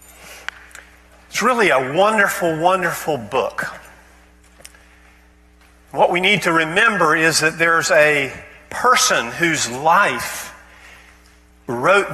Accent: American